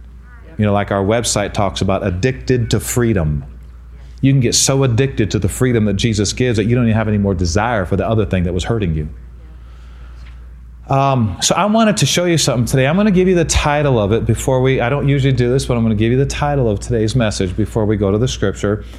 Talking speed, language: 250 wpm, English